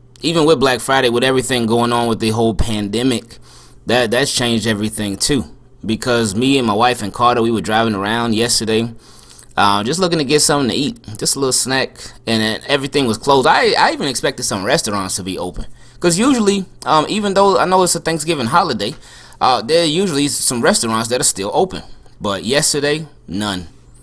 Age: 20-39